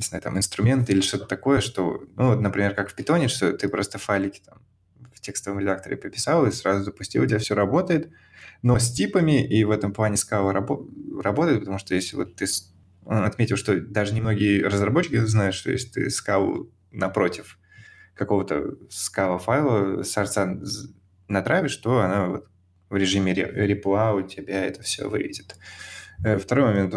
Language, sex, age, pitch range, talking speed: Russian, male, 20-39, 95-115 Hz, 170 wpm